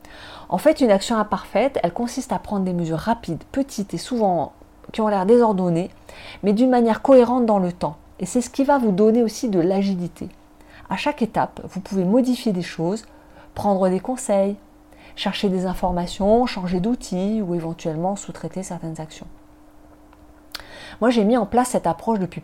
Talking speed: 175 wpm